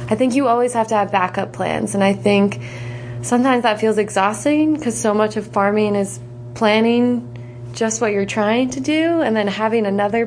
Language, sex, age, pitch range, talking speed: English, female, 20-39, 185-225 Hz, 195 wpm